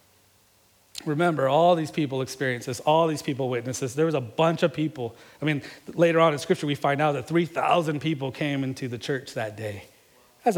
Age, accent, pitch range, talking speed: 40-59, American, 120-160 Hz, 205 wpm